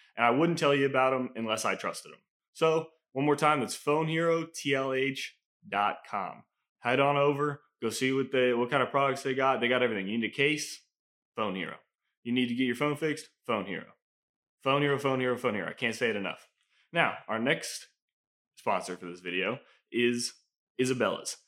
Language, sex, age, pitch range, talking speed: English, male, 20-39, 115-145 Hz, 175 wpm